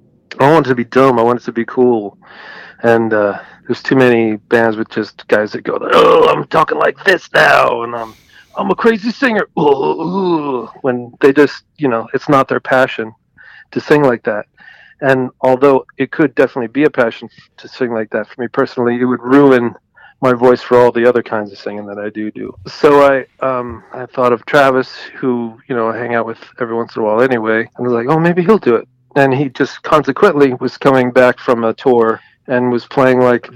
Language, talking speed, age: English, 220 wpm, 40-59